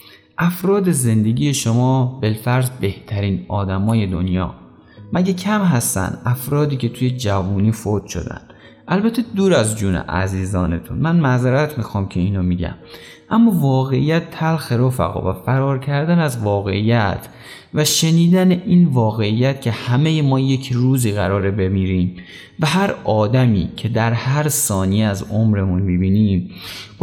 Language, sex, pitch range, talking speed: Persian, male, 100-150 Hz, 130 wpm